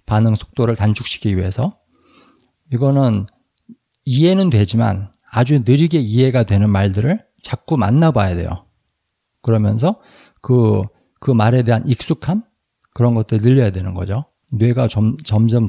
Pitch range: 100-135 Hz